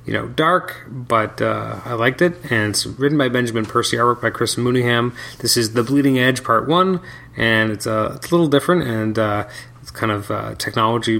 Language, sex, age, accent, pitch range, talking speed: English, male, 30-49, American, 110-130 Hz, 210 wpm